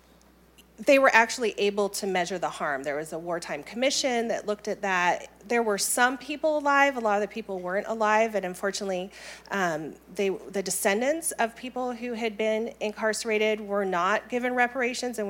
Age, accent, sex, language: 30-49, American, female, English